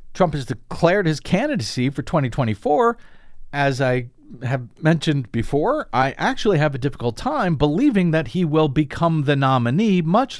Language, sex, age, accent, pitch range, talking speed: English, male, 50-69, American, 110-160 Hz, 150 wpm